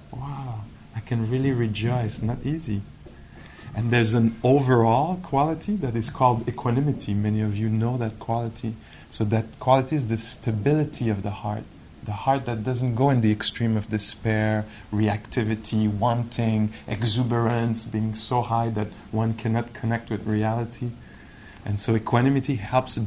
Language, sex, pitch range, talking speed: English, male, 110-130 Hz, 150 wpm